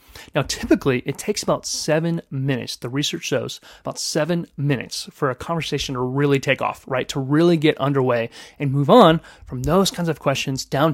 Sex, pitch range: male, 135-175 Hz